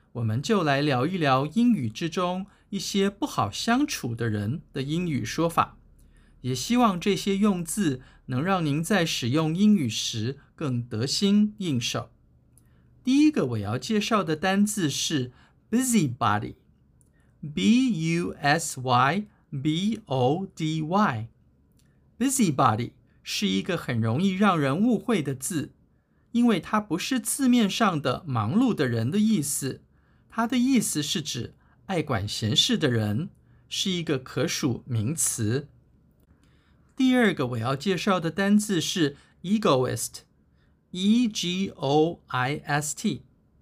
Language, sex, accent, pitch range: Chinese, male, native, 125-200 Hz